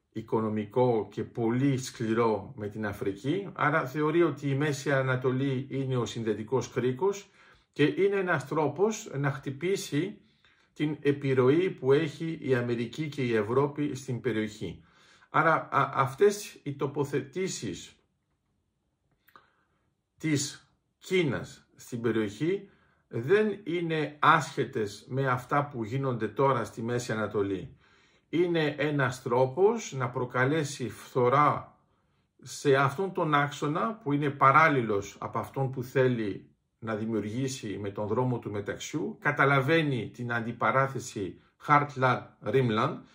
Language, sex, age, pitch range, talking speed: Greek, male, 50-69, 125-160 Hz, 115 wpm